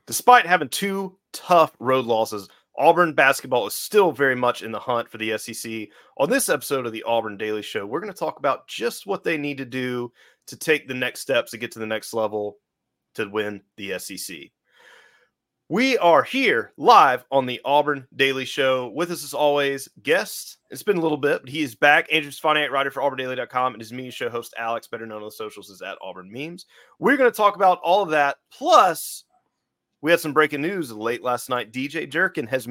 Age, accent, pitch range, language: 30-49, American, 115-160 Hz, English